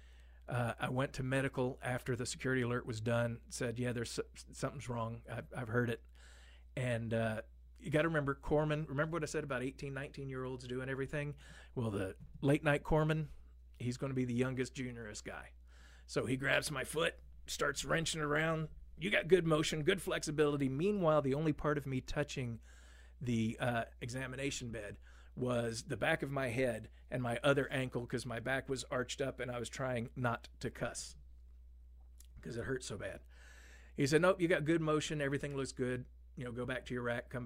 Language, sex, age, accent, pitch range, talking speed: English, male, 40-59, American, 95-135 Hz, 195 wpm